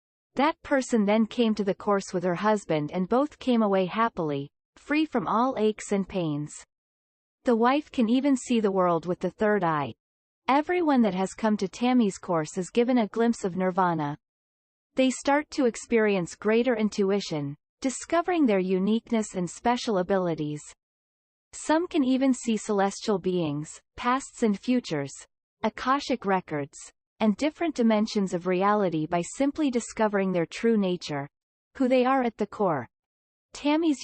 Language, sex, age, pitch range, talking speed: Vietnamese, female, 40-59, 185-250 Hz, 150 wpm